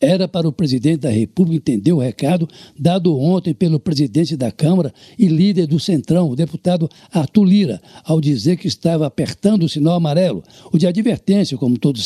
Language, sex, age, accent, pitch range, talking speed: Portuguese, male, 60-79, Brazilian, 160-195 Hz, 180 wpm